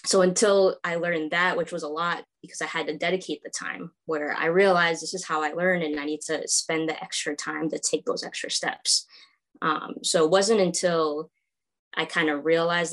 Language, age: English, 20-39